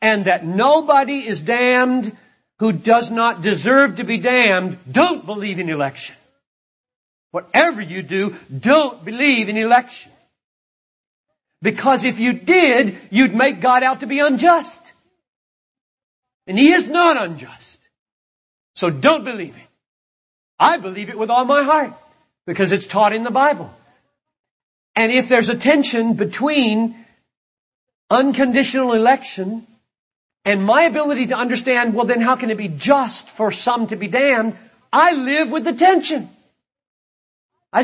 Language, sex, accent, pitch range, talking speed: English, male, American, 210-280 Hz, 140 wpm